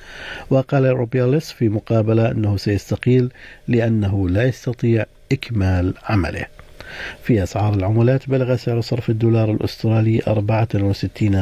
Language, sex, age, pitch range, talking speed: Arabic, male, 50-69, 105-130 Hz, 105 wpm